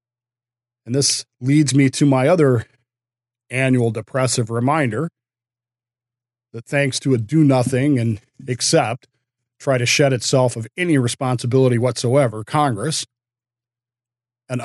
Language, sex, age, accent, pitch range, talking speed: English, male, 40-59, American, 120-140 Hz, 115 wpm